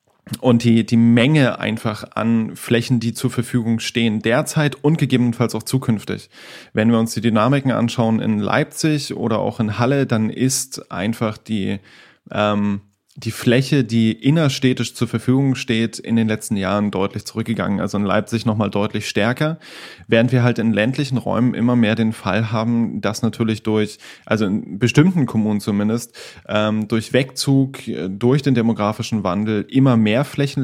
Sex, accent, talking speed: male, German, 155 wpm